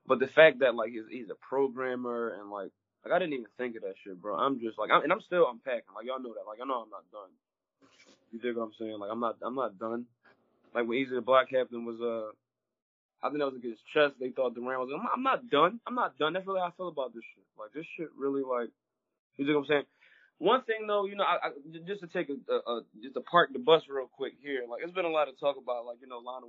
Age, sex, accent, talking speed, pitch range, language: 20-39, male, American, 290 wpm, 115-135 Hz, English